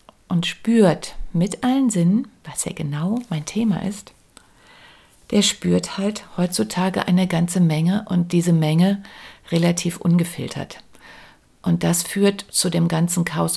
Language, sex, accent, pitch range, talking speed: German, female, German, 160-195 Hz, 135 wpm